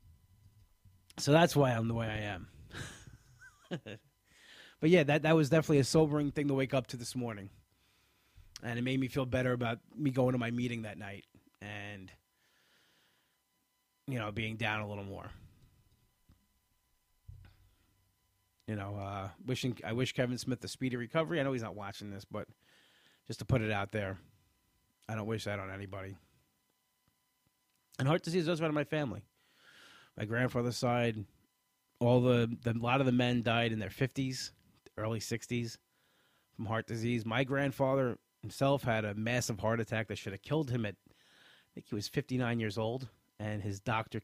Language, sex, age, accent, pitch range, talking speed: English, male, 20-39, American, 100-130 Hz, 175 wpm